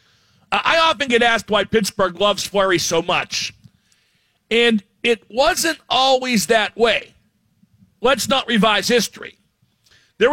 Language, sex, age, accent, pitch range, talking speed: English, male, 50-69, American, 195-235 Hz, 120 wpm